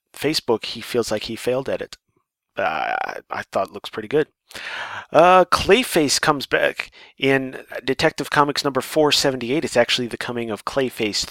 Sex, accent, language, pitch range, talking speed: male, American, English, 105-130 Hz, 160 wpm